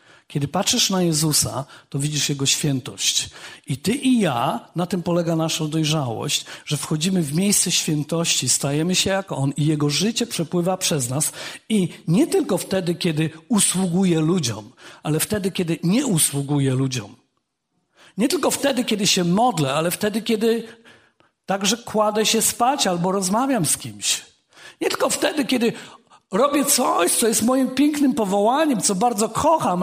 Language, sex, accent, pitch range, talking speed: Polish, male, native, 165-250 Hz, 155 wpm